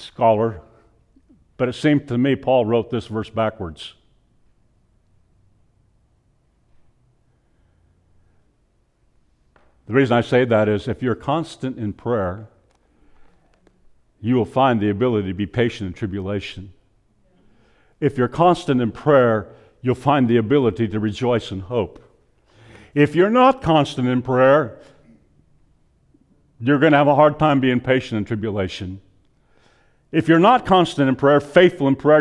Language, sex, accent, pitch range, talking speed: English, male, American, 105-155 Hz, 130 wpm